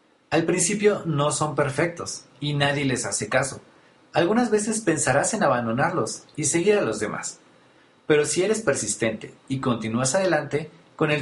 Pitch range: 135-175 Hz